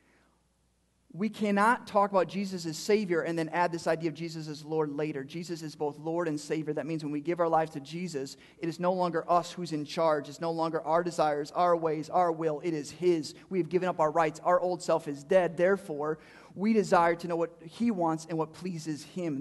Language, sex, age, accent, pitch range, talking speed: English, male, 30-49, American, 155-195 Hz, 230 wpm